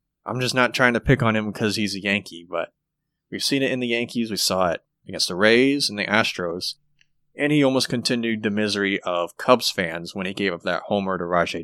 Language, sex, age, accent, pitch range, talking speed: English, male, 30-49, American, 95-125 Hz, 230 wpm